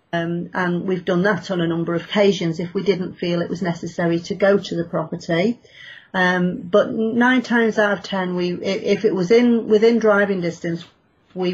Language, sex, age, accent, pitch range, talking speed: English, female, 40-59, British, 175-215 Hz, 200 wpm